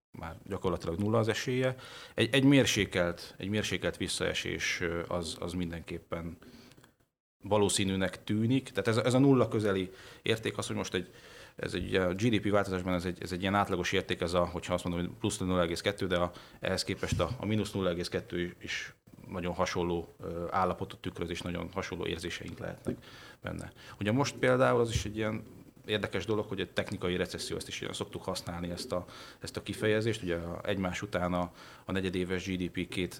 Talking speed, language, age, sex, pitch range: 170 wpm, Hungarian, 30-49, male, 90-105 Hz